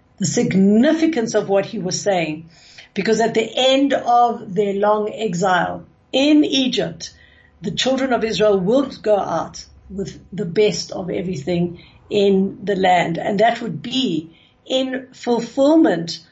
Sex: female